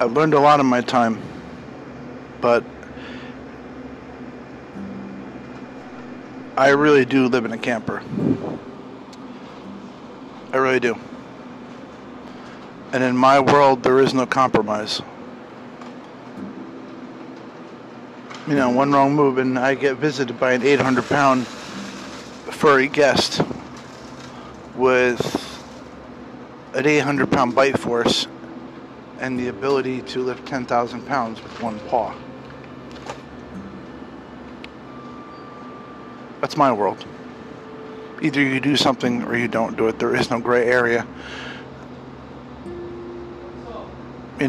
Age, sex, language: 50-69, male, English